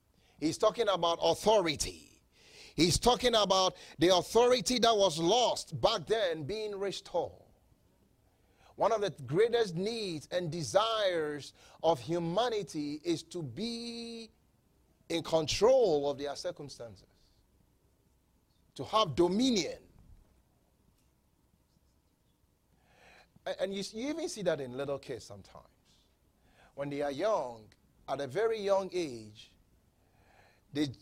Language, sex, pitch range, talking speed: English, male, 135-205 Hz, 105 wpm